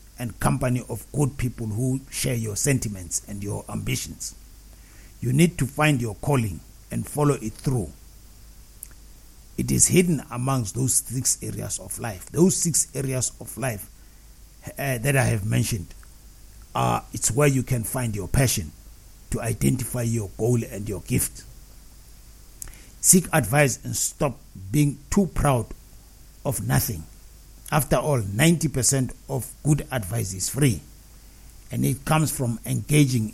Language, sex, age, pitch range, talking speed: English, male, 60-79, 105-140 Hz, 140 wpm